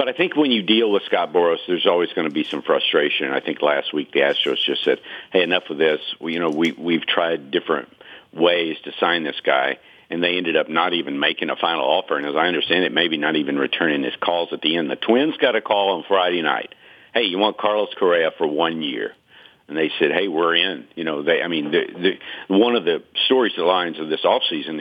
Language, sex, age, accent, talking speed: English, male, 50-69, American, 250 wpm